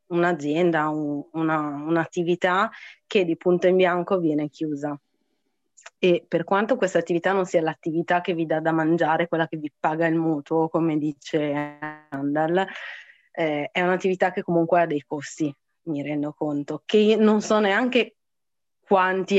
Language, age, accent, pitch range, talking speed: Italian, 30-49, native, 155-180 Hz, 145 wpm